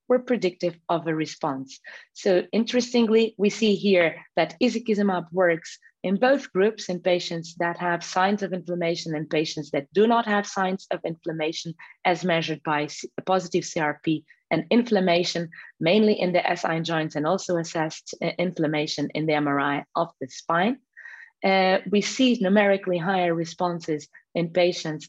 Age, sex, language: 30-49, female, English